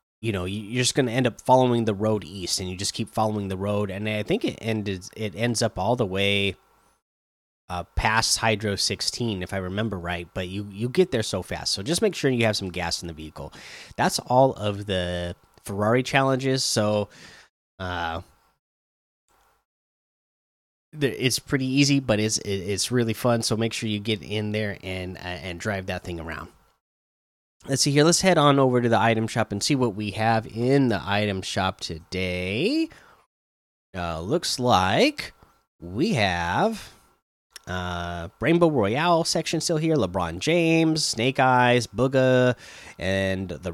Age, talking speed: 20-39, 170 wpm